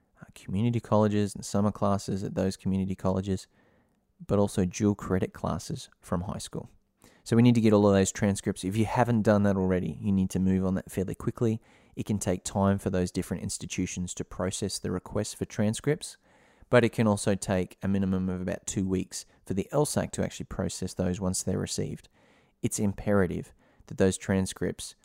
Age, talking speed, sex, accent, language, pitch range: 20-39, 190 wpm, male, Australian, English, 95-110 Hz